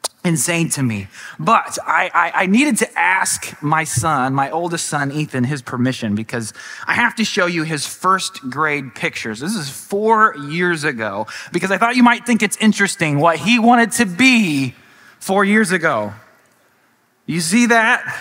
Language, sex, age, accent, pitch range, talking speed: English, male, 20-39, American, 170-235 Hz, 170 wpm